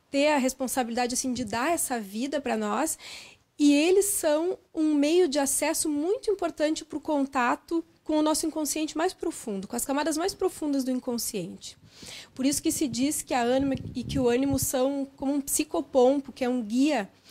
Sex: female